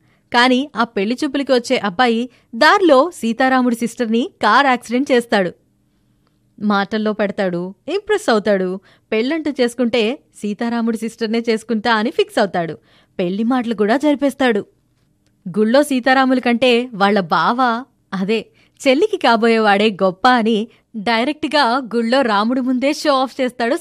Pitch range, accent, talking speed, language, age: 215-270 Hz, native, 110 wpm, Telugu, 20-39